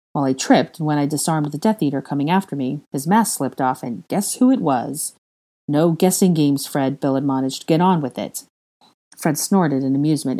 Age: 40-59